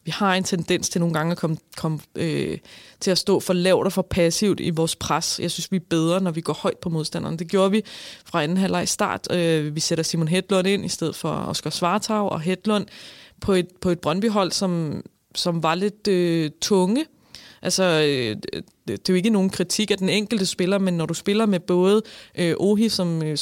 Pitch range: 165-195 Hz